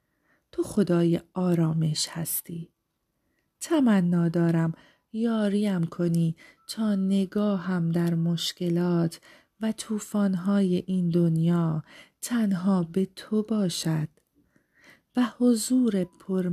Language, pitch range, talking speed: Persian, 170-205 Hz, 85 wpm